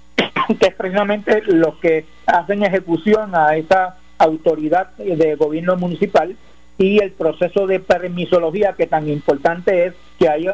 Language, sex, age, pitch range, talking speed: Spanish, male, 50-69, 155-190 Hz, 135 wpm